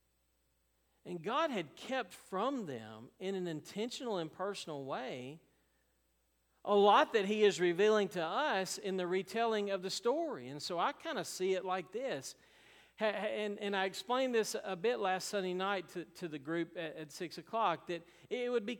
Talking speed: 180 wpm